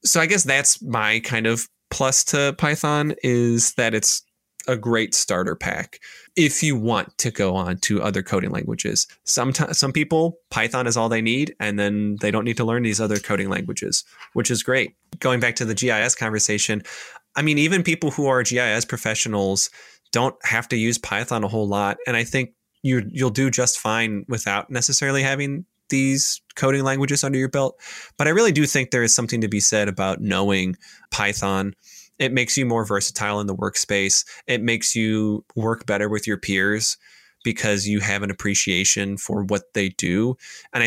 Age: 20-39